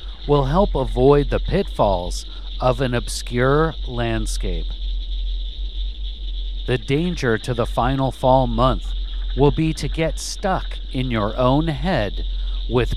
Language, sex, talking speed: English, male, 120 wpm